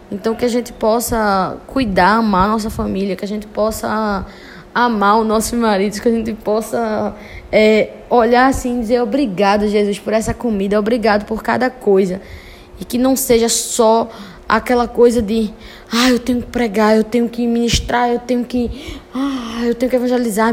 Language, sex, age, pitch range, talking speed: Portuguese, female, 10-29, 225-255 Hz, 165 wpm